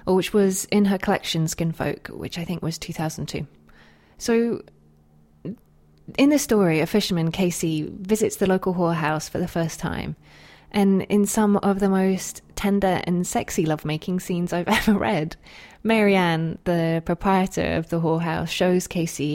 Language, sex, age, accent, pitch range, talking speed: English, female, 20-39, British, 160-200 Hz, 160 wpm